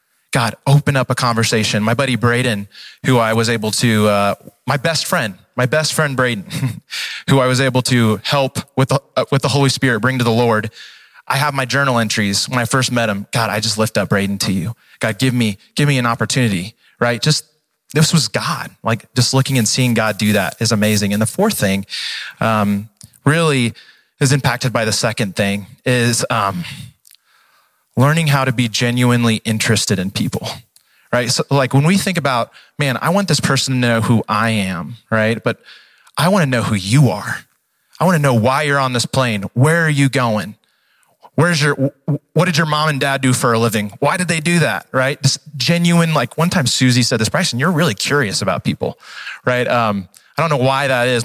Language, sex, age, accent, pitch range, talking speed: English, male, 20-39, American, 115-145 Hz, 205 wpm